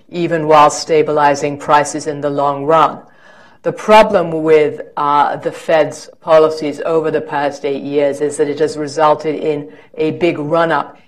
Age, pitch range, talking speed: 50-69, 150-165 Hz, 155 wpm